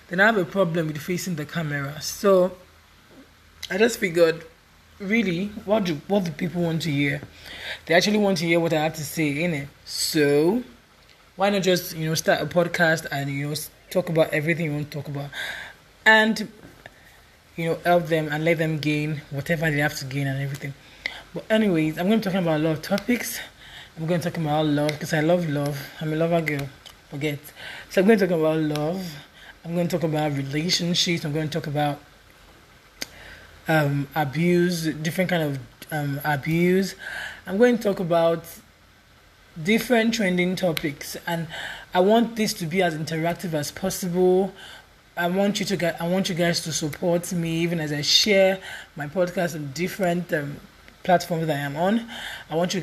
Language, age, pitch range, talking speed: English, 20-39, 155-185 Hz, 190 wpm